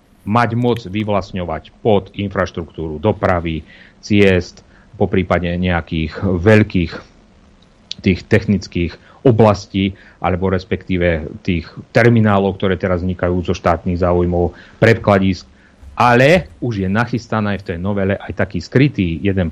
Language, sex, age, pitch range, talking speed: Slovak, male, 40-59, 90-110 Hz, 110 wpm